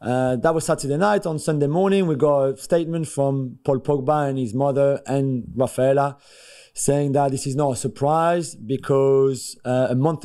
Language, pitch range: English, 130-155 Hz